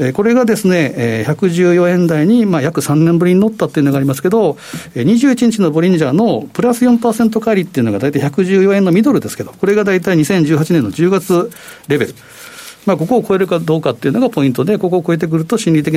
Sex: male